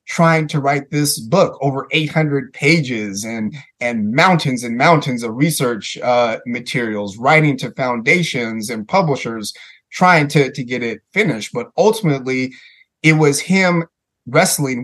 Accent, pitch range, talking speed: American, 115-150 Hz, 140 wpm